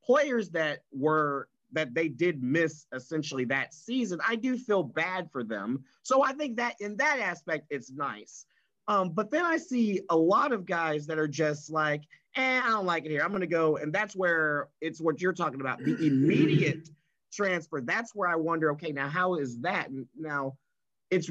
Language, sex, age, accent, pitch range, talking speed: English, male, 30-49, American, 145-185 Hz, 195 wpm